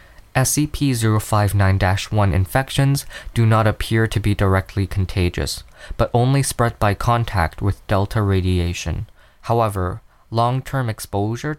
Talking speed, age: 105 wpm, 20-39